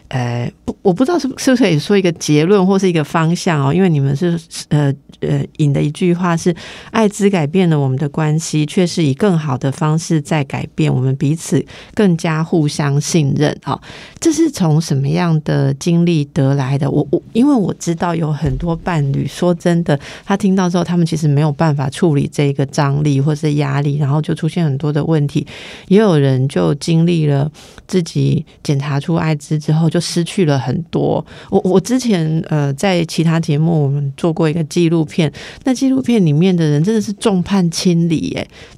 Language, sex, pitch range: Chinese, female, 145-180 Hz